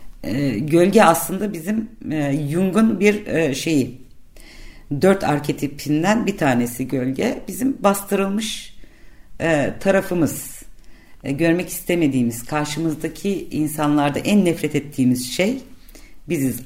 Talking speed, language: 85 wpm, Turkish